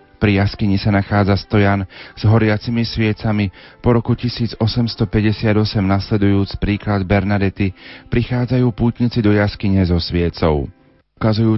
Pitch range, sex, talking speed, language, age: 100-115 Hz, male, 115 wpm, Slovak, 40-59